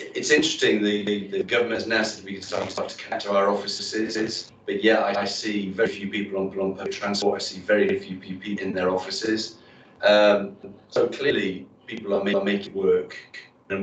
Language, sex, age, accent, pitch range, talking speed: English, male, 30-49, British, 95-110 Hz, 205 wpm